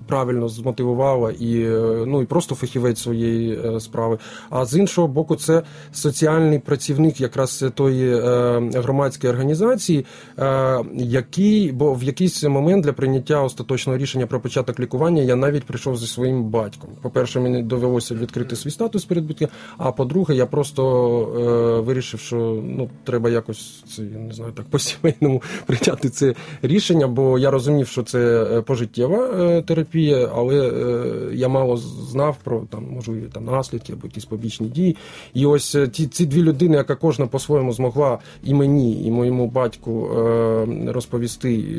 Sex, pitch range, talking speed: male, 115-145 Hz, 150 wpm